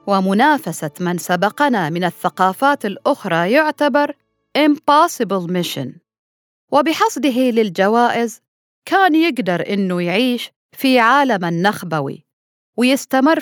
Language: Arabic